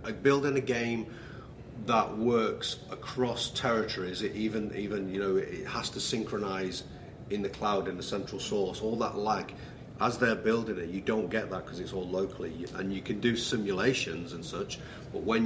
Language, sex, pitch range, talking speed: English, male, 95-115 Hz, 185 wpm